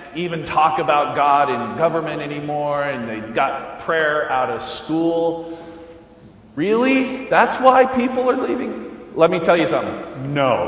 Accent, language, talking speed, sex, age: American, English, 145 wpm, male, 30-49